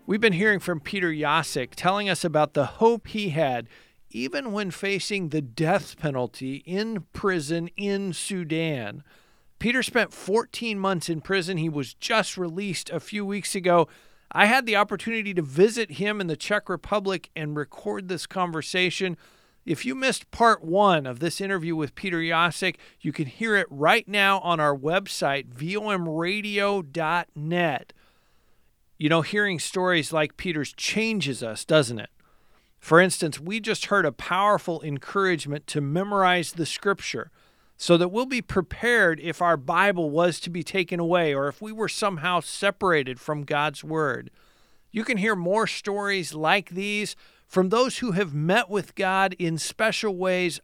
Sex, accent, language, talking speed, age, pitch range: male, American, English, 160 wpm, 50-69, 155-205 Hz